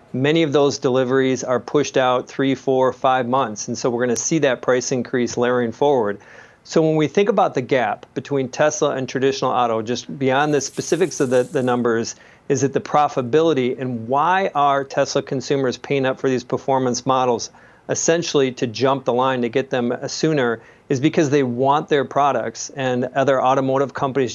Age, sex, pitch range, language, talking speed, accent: 40-59, male, 125-145 Hz, English, 185 wpm, American